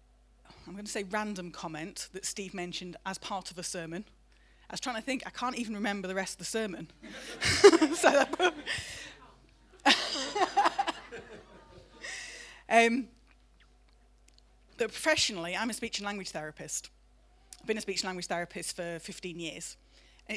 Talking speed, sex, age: 140 wpm, female, 30-49